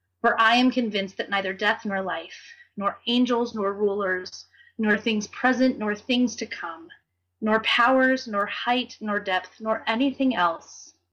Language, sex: English, female